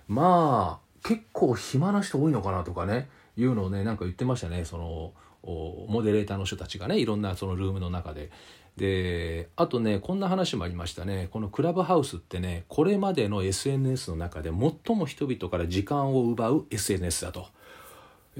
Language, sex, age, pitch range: Japanese, male, 40-59, 90-135 Hz